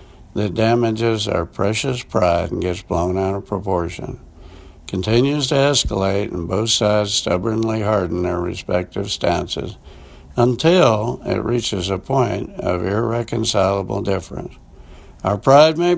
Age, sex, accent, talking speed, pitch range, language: 60-79, male, American, 125 wpm, 90-120 Hz, English